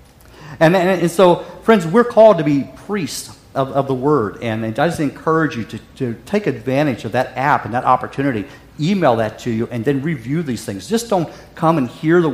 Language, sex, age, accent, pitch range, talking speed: English, male, 50-69, American, 125-175 Hz, 215 wpm